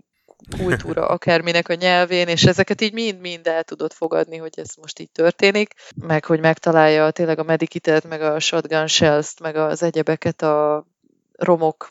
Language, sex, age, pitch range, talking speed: Hungarian, female, 20-39, 160-175 Hz, 155 wpm